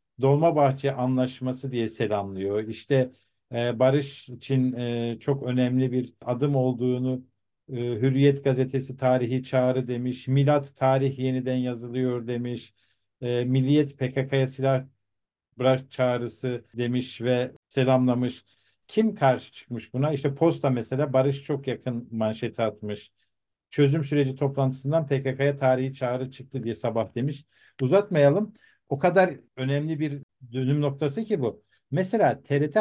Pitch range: 125-150 Hz